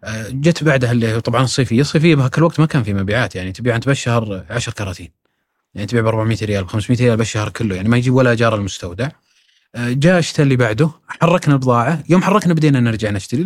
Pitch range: 110-140 Hz